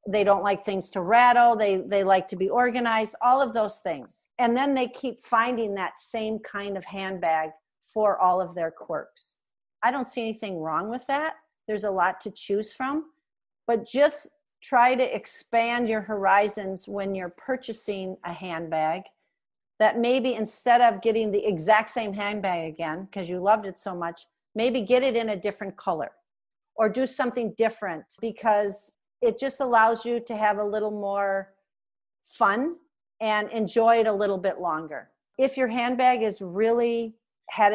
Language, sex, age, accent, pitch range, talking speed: English, female, 50-69, American, 190-235 Hz, 170 wpm